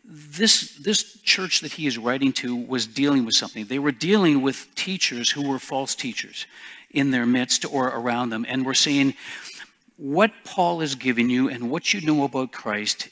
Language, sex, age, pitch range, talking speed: English, male, 50-69, 135-175 Hz, 190 wpm